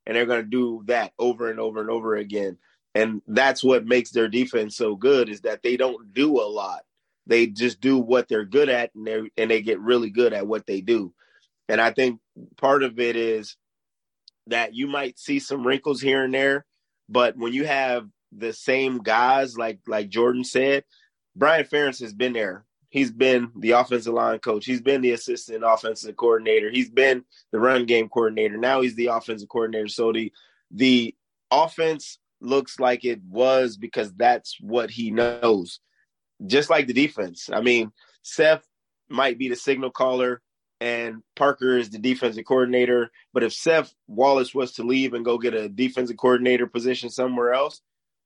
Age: 30-49